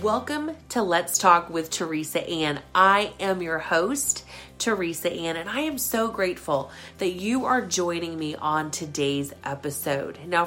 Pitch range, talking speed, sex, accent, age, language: 145-190 Hz, 155 wpm, female, American, 30-49, English